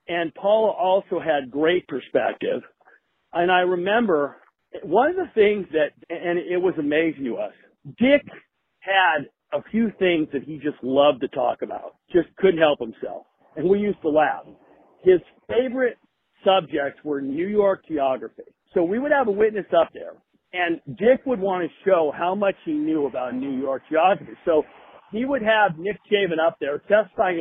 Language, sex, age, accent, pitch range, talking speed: English, male, 50-69, American, 170-235 Hz, 175 wpm